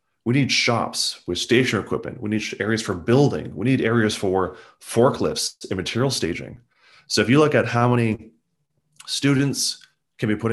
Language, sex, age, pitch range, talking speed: English, male, 30-49, 90-110 Hz, 170 wpm